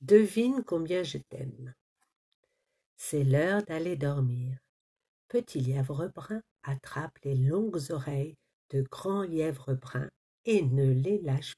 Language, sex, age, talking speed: French, female, 50-69, 115 wpm